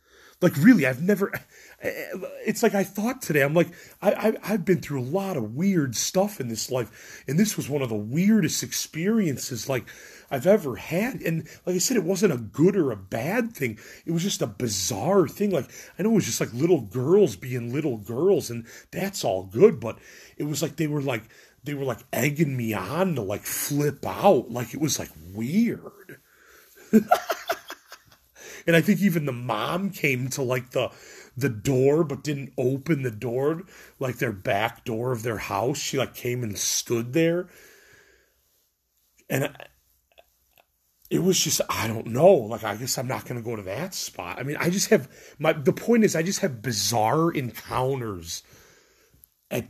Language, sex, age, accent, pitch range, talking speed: English, male, 40-59, American, 120-190 Hz, 190 wpm